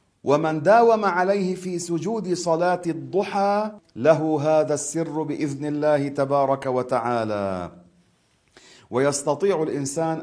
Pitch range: 130-155 Hz